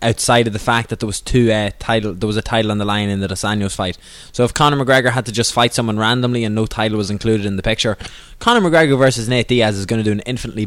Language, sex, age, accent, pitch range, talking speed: English, male, 20-39, Irish, 110-145 Hz, 280 wpm